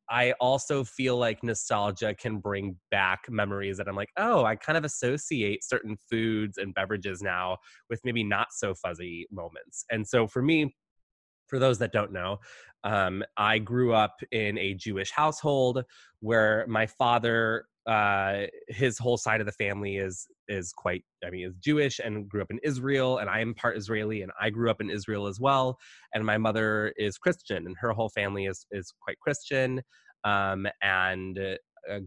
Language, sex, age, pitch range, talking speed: English, male, 20-39, 100-120 Hz, 180 wpm